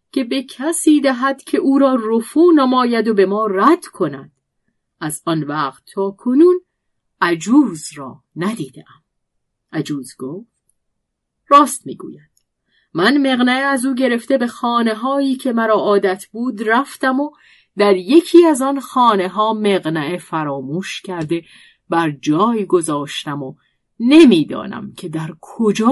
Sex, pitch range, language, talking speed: female, 160-260 Hz, Persian, 130 wpm